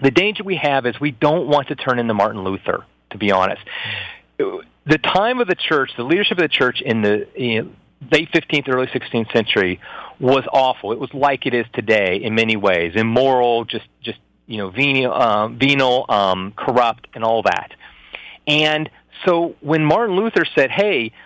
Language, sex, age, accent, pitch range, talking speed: English, male, 40-59, American, 115-155 Hz, 185 wpm